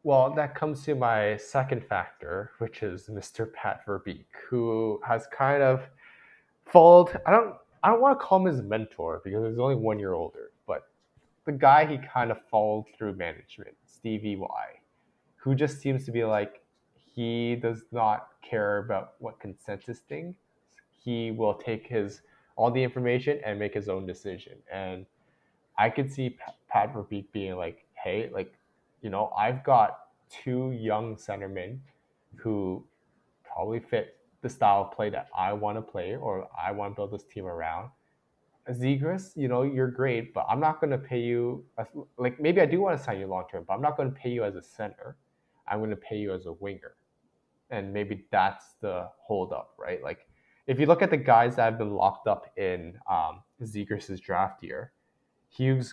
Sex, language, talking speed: male, English, 185 wpm